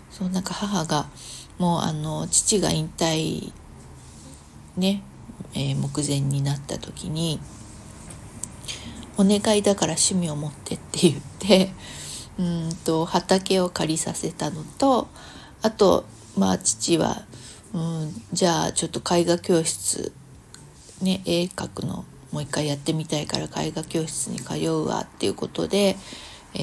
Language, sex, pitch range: Japanese, female, 150-195 Hz